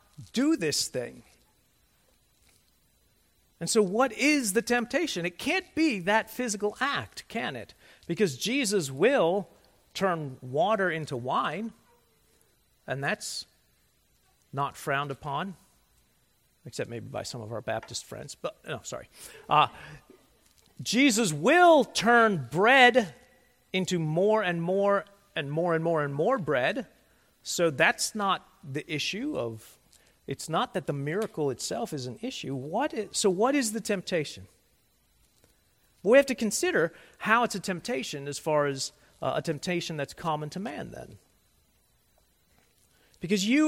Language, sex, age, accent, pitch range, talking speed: English, male, 40-59, American, 150-225 Hz, 135 wpm